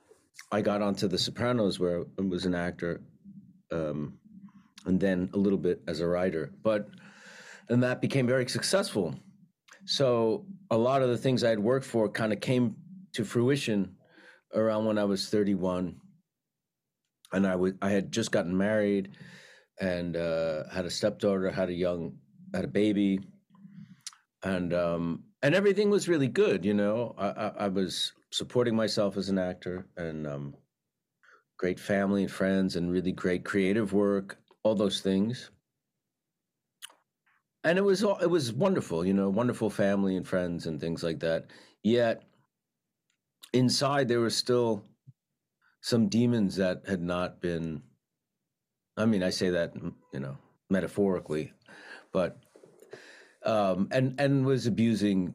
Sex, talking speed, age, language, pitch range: male, 150 wpm, 40-59, English, 90-125 Hz